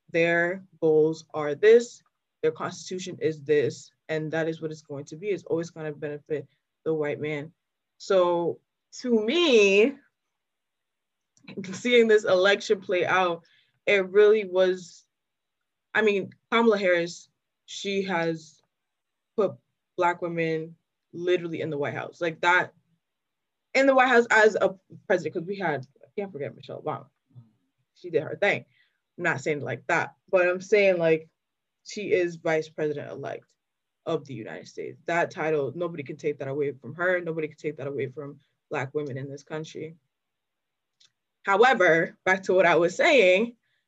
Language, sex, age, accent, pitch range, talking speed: English, female, 20-39, American, 155-195 Hz, 155 wpm